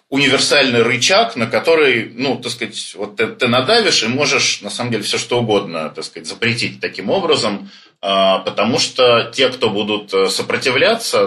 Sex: male